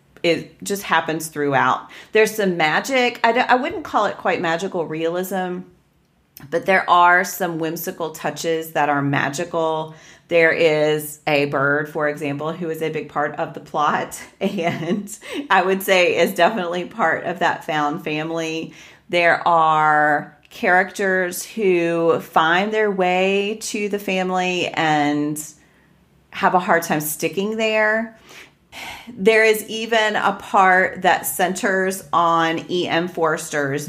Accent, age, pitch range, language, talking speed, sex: American, 40-59, 155-190 Hz, English, 135 wpm, female